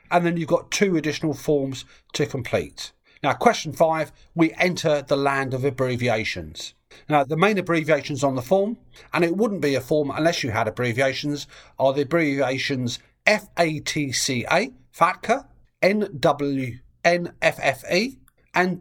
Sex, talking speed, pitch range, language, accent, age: male, 130 wpm, 135-170 Hz, English, British, 40-59